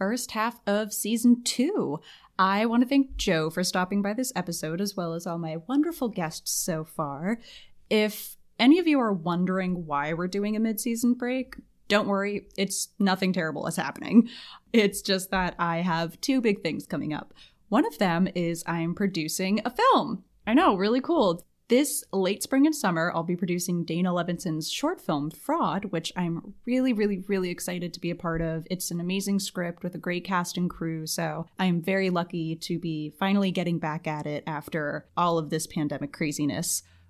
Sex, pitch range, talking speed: female, 170-225 Hz, 190 wpm